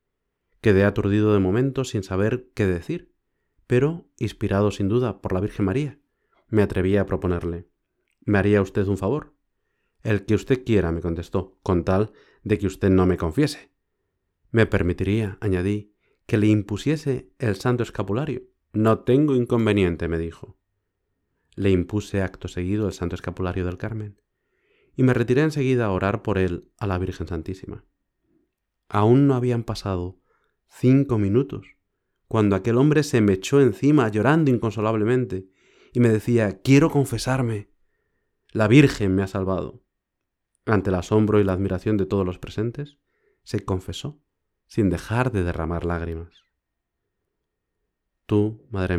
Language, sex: Spanish, male